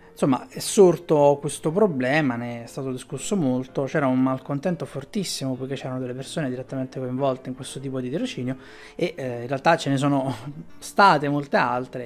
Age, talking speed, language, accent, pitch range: 20-39, 175 wpm, Italian, native, 135-170 Hz